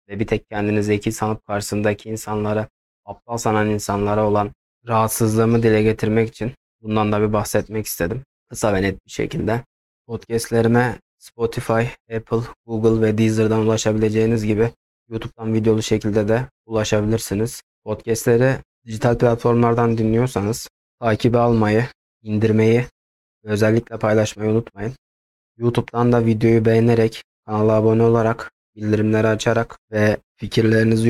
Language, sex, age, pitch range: Turkish, male, 20-39, 105-115 Hz